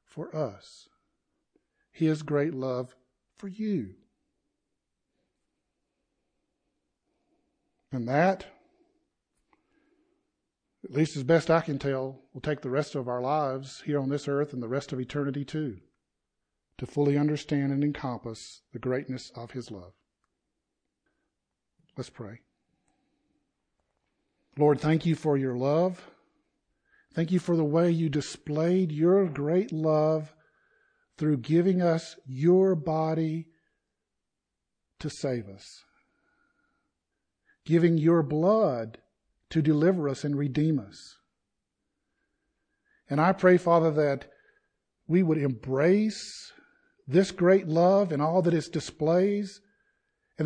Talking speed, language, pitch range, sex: 115 wpm, English, 140-185 Hz, male